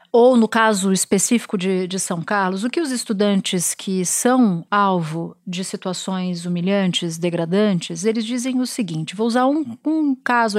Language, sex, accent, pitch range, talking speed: Portuguese, female, Brazilian, 195-240 Hz, 160 wpm